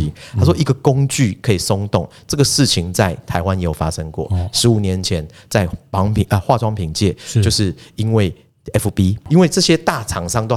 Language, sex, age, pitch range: Chinese, male, 30-49, 95-130 Hz